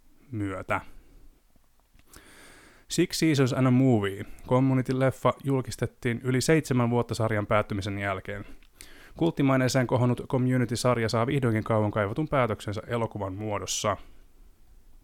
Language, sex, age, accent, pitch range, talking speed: Finnish, male, 20-39, native, 110-130 Hz, 95 wpm